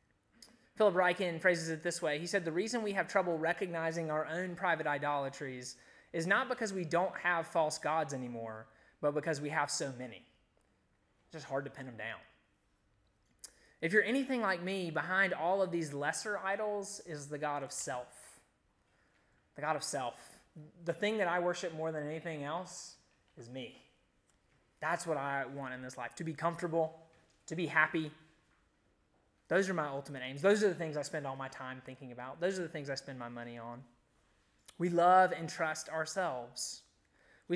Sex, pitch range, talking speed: male, 145-185 Hz, 185 wpm